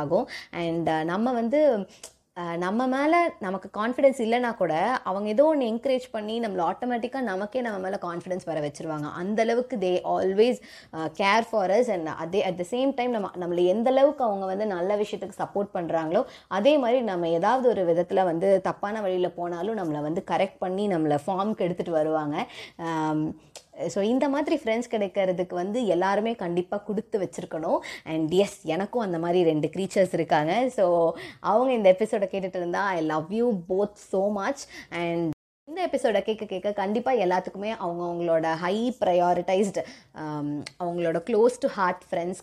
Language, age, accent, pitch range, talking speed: Tamil, 20-39, native, 170-230 Hz, 150 wpm